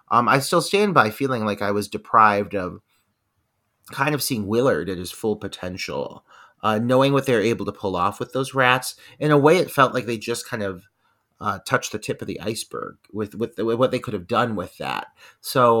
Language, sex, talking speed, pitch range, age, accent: English, male, 220 wpm, 100-130 Hz, 30-49, American